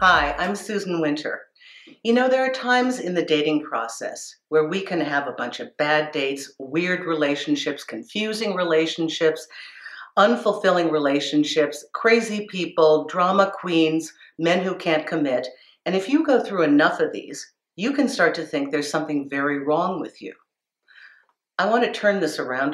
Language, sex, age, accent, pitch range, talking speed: English, female, 50-69, American, 145-200 Hz, 160 wpm